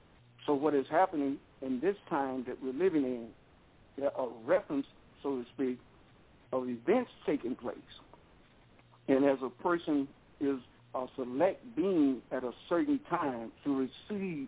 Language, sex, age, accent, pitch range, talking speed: English, male, 60-79, American, 130-175 Hz, 145 wpm